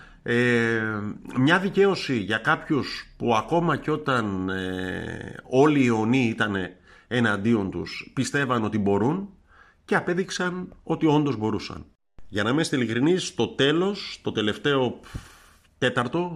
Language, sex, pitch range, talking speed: Greek, male, 105-135 Hz, 120 wpm